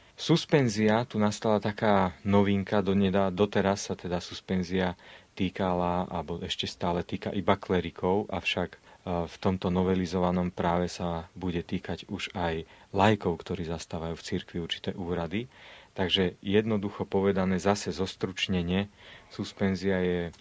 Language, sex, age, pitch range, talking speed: Slovak, male, 40-59, 85-100 Hz, 125 wpm